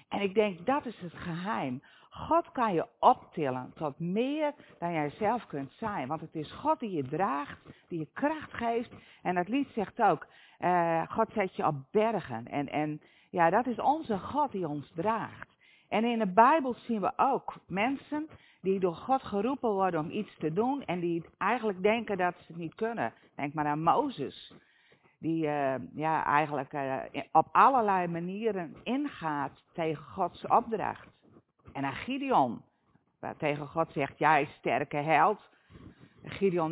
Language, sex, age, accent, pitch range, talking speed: Dutch, female, 50-69, Dutch, 155-230 Hz, 170 wpm